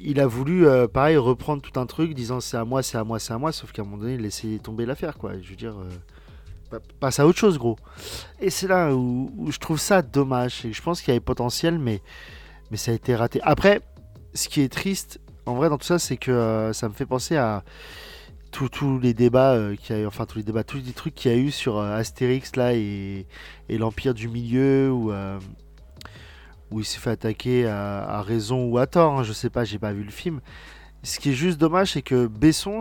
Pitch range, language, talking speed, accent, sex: 110-145 Hz, French, 245 wpm, French, male